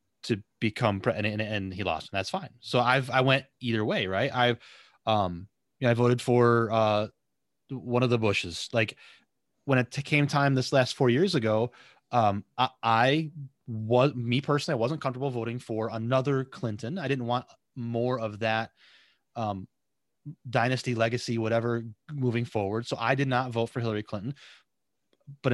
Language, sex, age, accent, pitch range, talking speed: English, male, 30-49, American, 105-130 Hz, 160 wpm